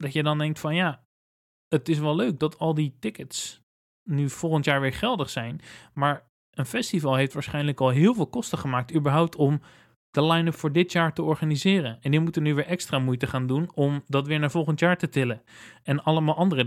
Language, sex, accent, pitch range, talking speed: Dutch, male, Dutch, 135-170 Hz, 210 wpm